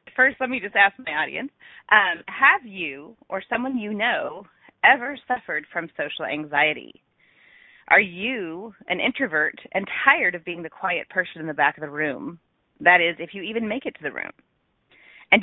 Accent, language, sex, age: American, English, female, 30-49